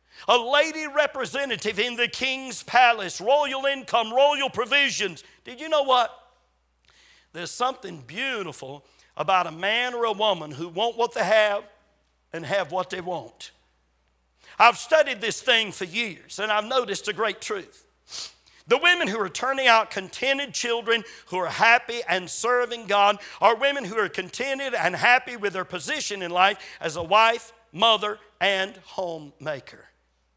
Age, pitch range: 50-69, 185-255 Hz